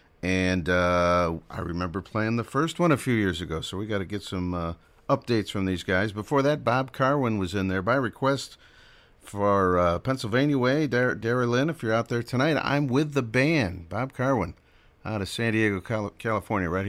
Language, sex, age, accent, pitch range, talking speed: English, male, 50-69, American, 90-125 Hz, 195 wpm